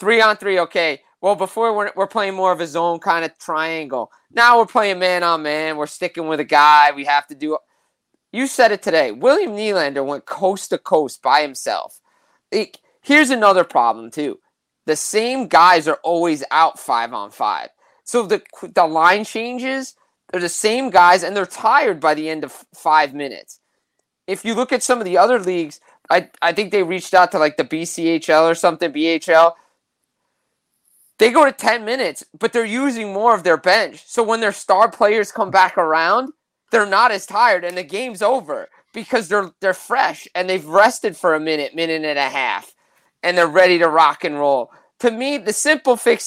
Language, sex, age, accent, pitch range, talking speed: English, male, 30-49, American, 165-235 Hz, 190 wpm